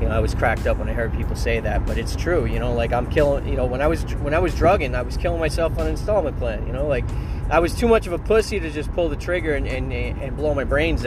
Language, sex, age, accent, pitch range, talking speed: English, male, 20-39, American, 90-115 Hz, 315 wpm